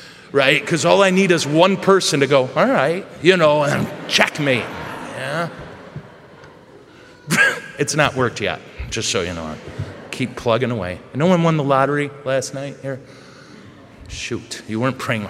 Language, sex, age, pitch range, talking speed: English, male, 40-59, 125-160 Hz, 155 wpm